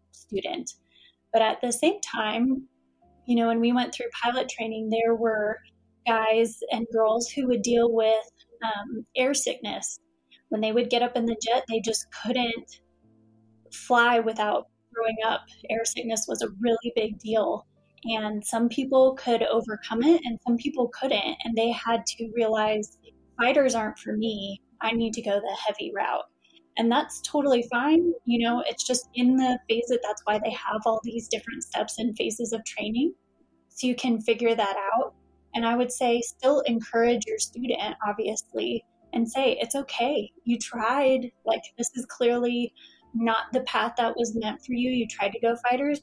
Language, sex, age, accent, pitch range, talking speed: Indonesian, female, 20-39, American, 220-245 Hz, 175 wpm